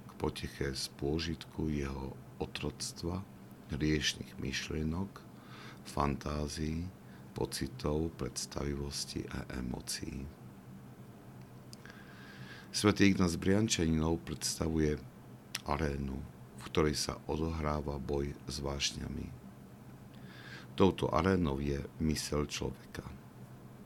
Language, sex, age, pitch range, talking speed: Slovak, male, 60-79, 65-80 Hz, 75 wpm